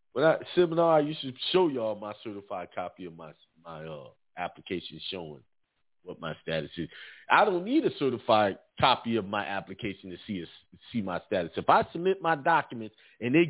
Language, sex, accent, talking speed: English, male, American, 190 wpm